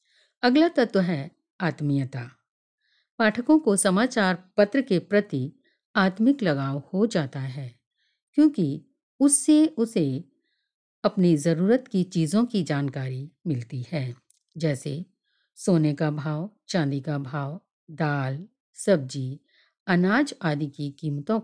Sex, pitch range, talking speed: female, 145-215 Hz, 110 wpm